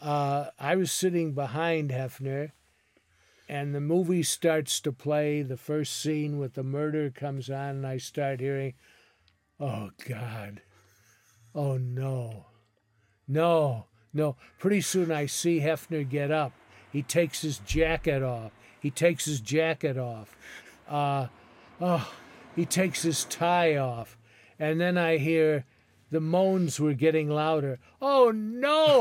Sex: male